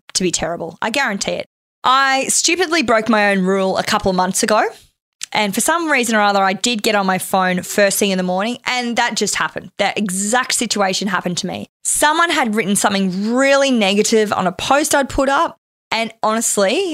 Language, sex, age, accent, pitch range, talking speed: English, female, 20-39, Australian, 195-250 Hz, 205 wpm